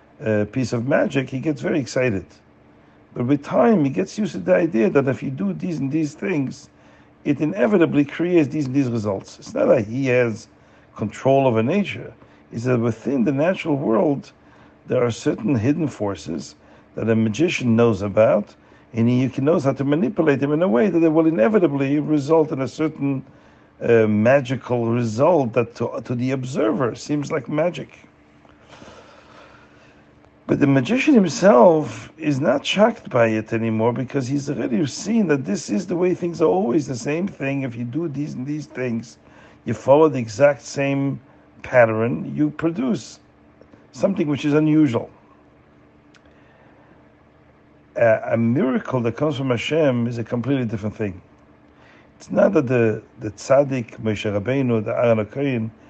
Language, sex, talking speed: Hebrew, male, 165 wpm